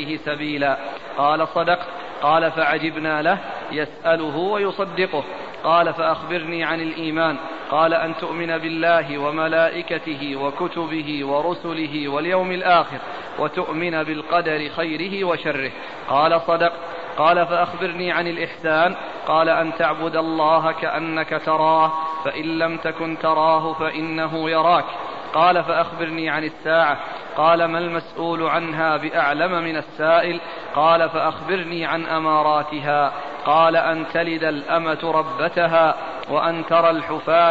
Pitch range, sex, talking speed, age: 155-170 Hz, male, 105 wpm, 40-59